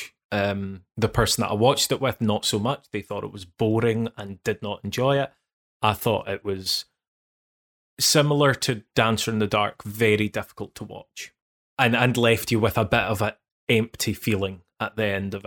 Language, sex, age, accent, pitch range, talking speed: English, male, 20-39, British, 105-130 Hz, 195 wpm